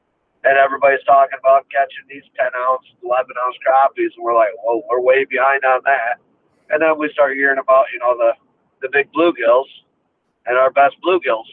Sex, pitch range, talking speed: male, 135-160 Hz, 175 wpm